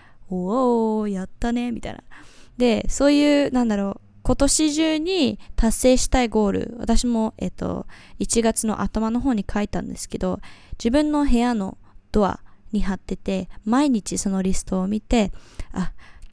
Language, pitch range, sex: Japanese, 195-245 Hz, female